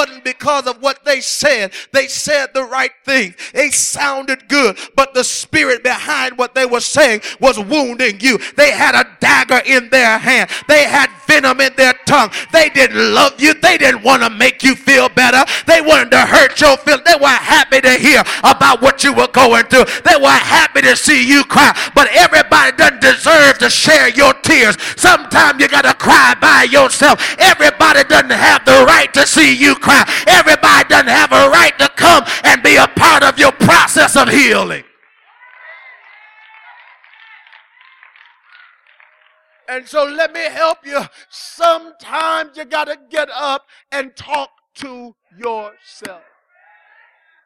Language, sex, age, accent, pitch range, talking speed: English, male, 40-59, American, 255-300 Hz, 160 wpm